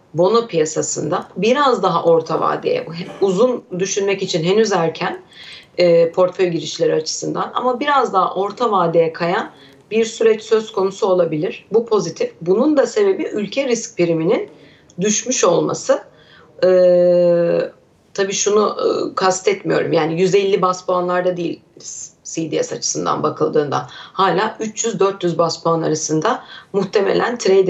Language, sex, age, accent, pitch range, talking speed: Turkish, female, 40-59, native, 175-235 Hz, 120 wpm